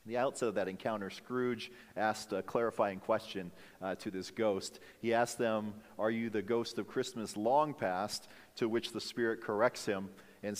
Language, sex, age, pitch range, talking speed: English, male, 40-59, 95-125 Hz, 185 wpm